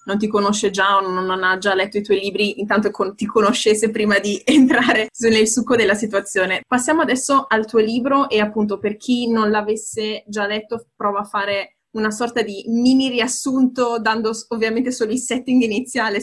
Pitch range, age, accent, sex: 195-235 Hz, 20-39, native, female